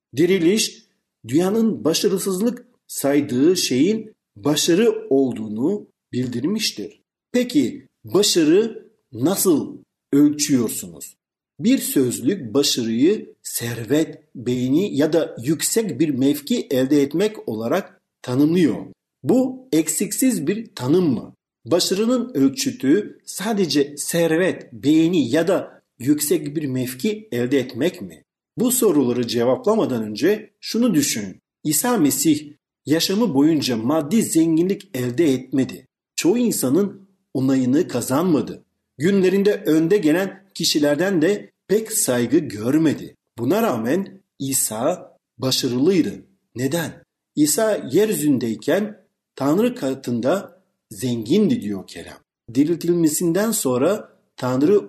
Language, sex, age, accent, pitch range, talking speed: Turkish, male, 50-69, native, 135-225 Hz, 95 wpm